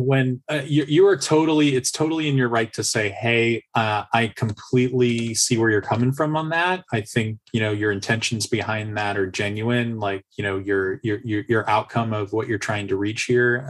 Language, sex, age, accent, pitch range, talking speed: English, male, 20-39, American, 105-125 Hz, 215 wpm